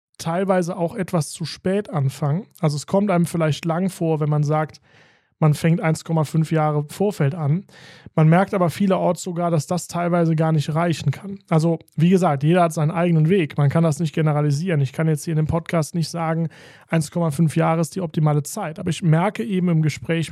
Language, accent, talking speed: German, German, 200 wpm